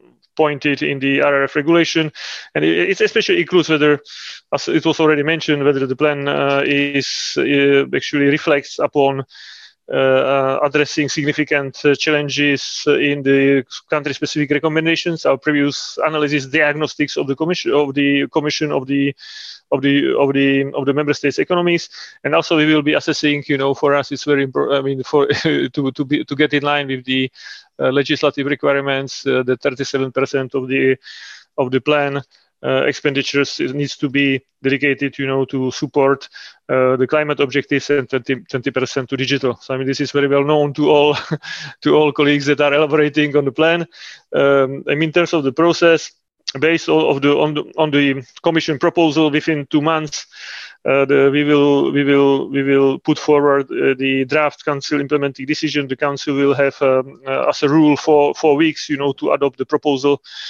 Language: Slovak